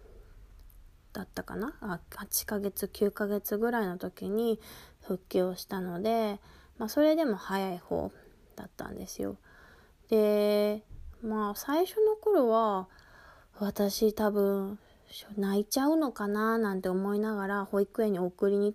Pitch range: 185-230 Hz